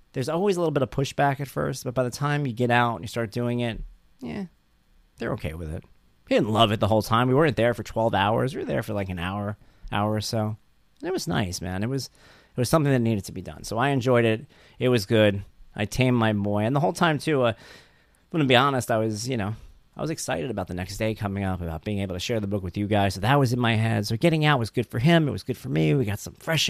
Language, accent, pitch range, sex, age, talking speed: English, American, 95-130 Hz, male, 30-49, 290 wpm